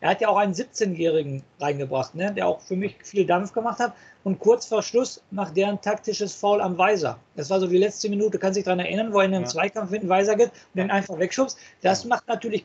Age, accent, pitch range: 50-69, German, 160-200 Hz